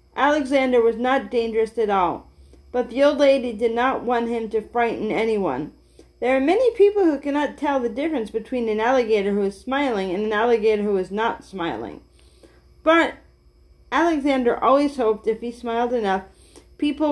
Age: 40-59